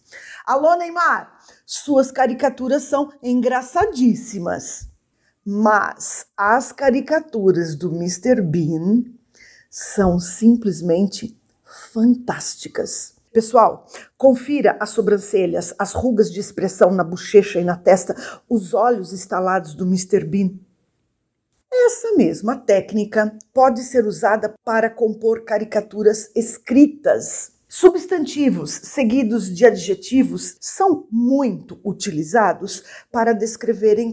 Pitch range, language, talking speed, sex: 195-250 Hz, English, 95 wpm, female